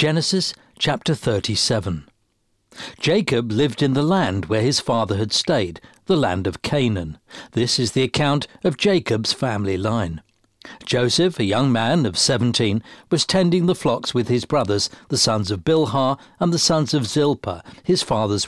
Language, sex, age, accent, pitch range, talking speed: English, male, 60-79, British, 110-155 Hz, 160 wpm